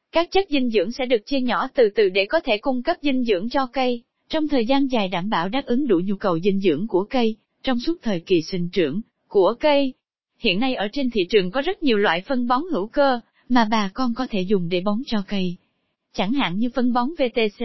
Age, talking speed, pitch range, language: 20-39, 245 wpm, 225-275 Hz, Vietnamese